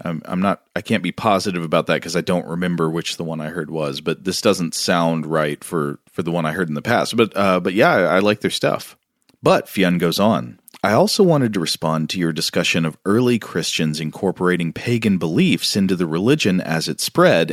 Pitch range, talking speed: 80-115 Hz, 225 wpm